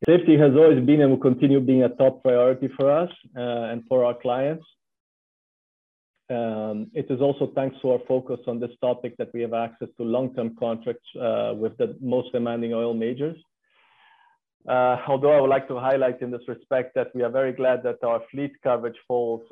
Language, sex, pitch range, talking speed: English, male, 115-135 Hz, 195 wpm